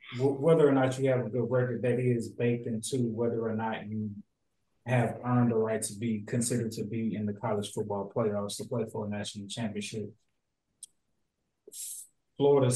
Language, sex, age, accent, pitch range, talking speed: English, male, 20-39, American, 110-125 Hz, 175 wpm